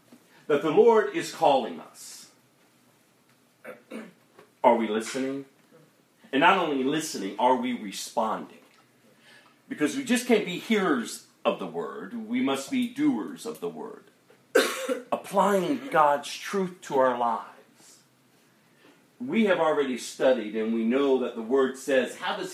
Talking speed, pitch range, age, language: 135 wpm, 130-215 Hz, 40-59, English